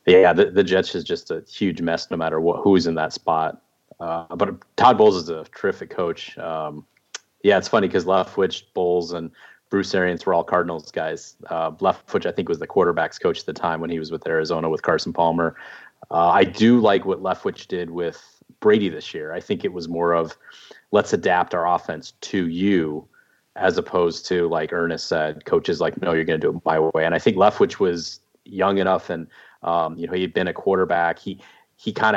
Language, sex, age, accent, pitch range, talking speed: English, male, 30-49, American, 85-95 Hz, 220 wpm